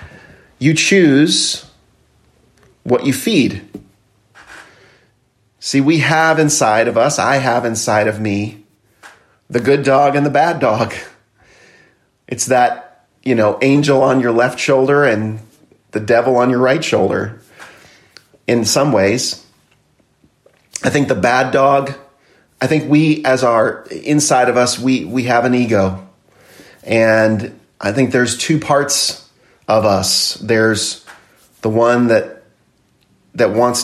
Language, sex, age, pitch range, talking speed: English, male, 40-59, 110-135 Hz, 130 wpm